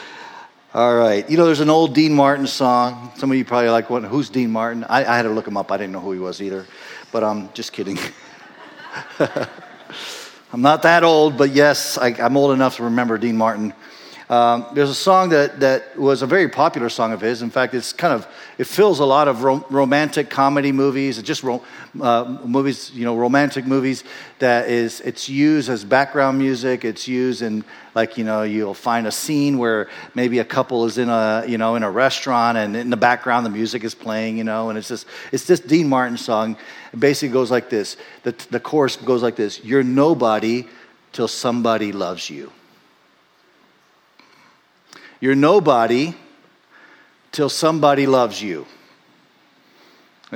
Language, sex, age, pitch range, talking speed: English, male, 50-69, 115-145 Hz, 185 wpm